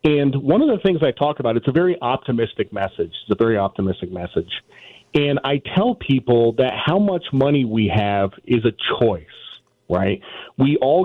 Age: 40-59